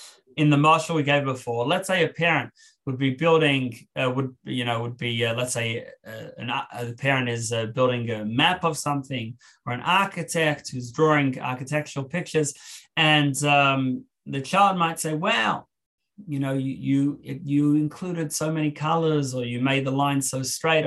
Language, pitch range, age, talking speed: English, 130-160 Hz, 30-49, 185 wpm